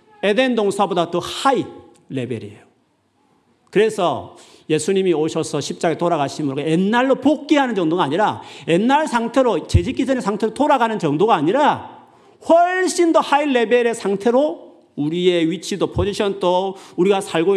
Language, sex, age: Korean, male, 40-59